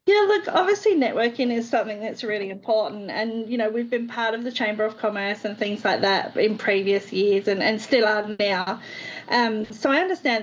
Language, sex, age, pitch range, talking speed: English, female, 30-49, 215-250 Hz, 205 wpm